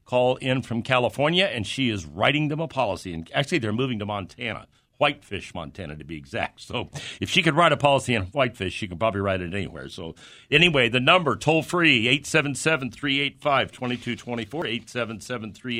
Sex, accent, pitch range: male, American, 105-135 Hz